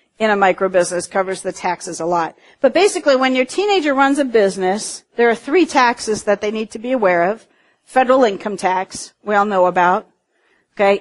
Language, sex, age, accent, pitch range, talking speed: English, female, 50-69, American, 190-235 Hz, 190 wpm